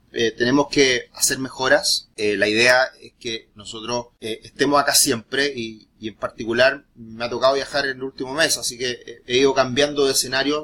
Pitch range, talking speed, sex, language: 115-135 Hz, 190 wpm, male, Spanish